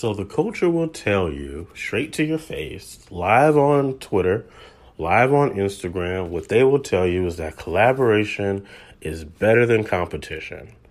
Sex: male